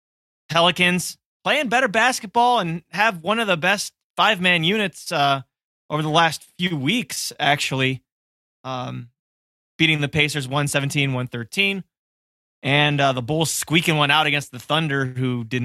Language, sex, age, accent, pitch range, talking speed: English, male, 20-39, American, 130-175 Hz, 140 wpm